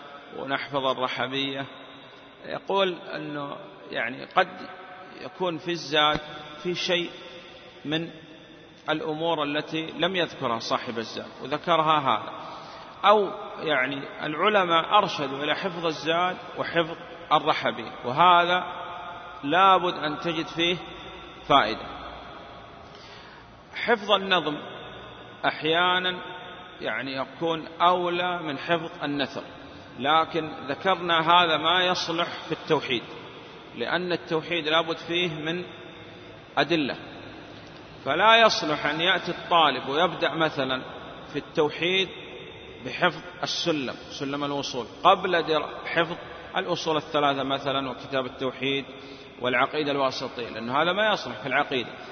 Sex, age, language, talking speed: male, 40-59, Arabic, 100 wpm